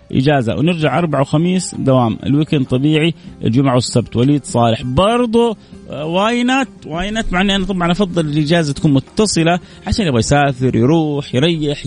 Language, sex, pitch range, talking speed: Arabic, male, 130-200 Hz, 130 wpm